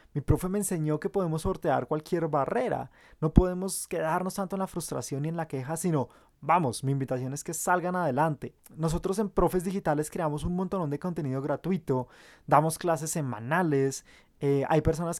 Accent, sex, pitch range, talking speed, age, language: Colombian, male, 145-185 Hz, 175 wpm, 20-39, Spanish